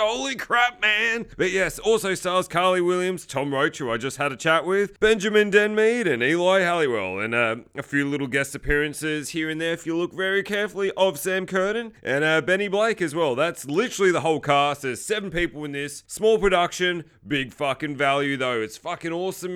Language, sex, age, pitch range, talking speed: English, male, 30-49, 140-210 Hz, 205 wpm